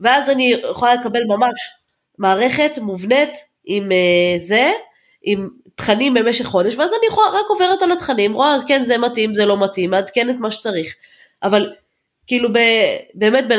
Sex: female